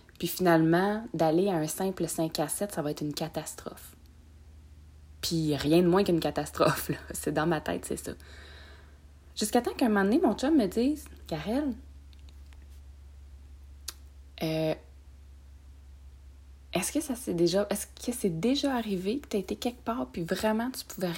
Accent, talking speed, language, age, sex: Canadian, 165 wpm, French, 30-49, female